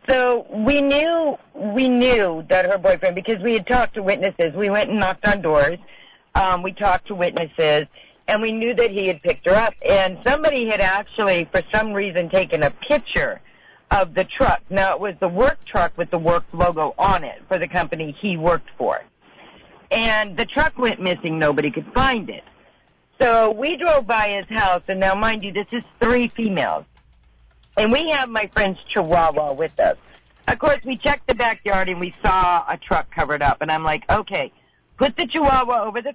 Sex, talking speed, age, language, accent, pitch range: female, 195 wpm, 50-69, English, American, 185-260 Hz